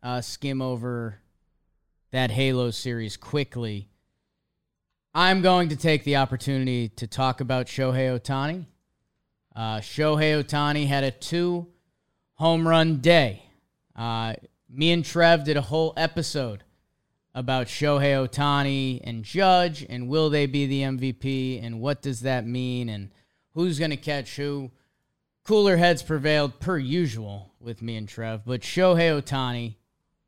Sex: male